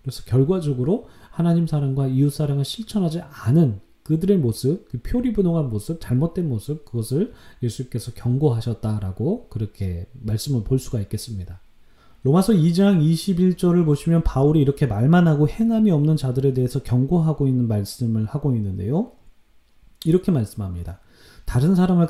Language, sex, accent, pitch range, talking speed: English, male, Korean, 115-165 Hz, 120 wpm